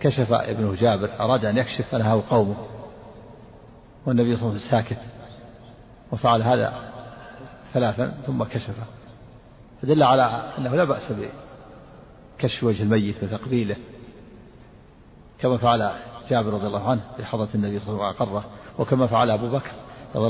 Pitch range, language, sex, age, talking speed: 110-125 Hz, Arabic, male, 50-69, 135 wpm